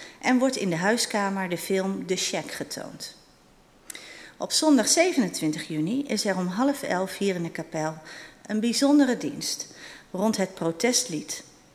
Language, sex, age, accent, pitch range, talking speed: Dutch, female, 40-59, Dutch, 175-240 Hz, 150 wpm